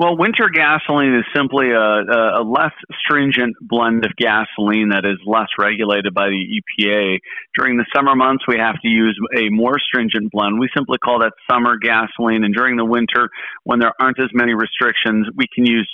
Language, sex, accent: English, male, American